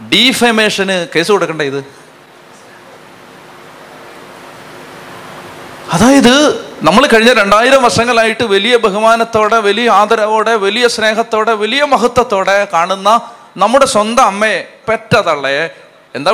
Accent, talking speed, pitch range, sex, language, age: native, 80 wpm, 185-235 Hz, male, Malayalam, 30-49